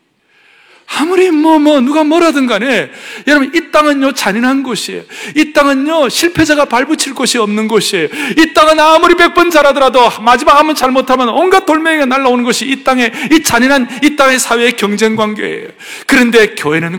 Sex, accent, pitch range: male, native, 185-265 Hz